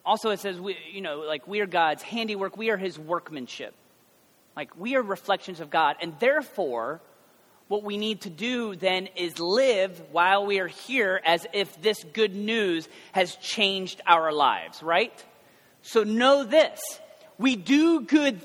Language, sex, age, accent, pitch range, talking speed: English, male, 30-49, American, 170-230 Hz, 165 wpm